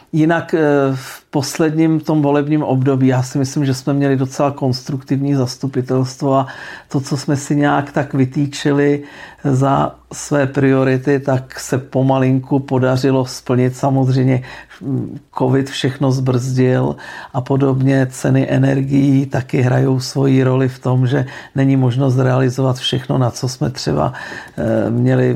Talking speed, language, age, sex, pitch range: 130 wpm, Czech, 50-69, male, 125-140 Hz